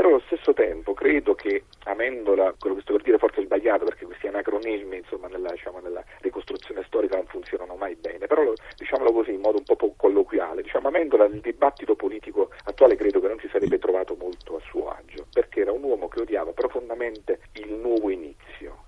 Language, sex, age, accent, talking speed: Italian, male, 40-59, native, 195 wpm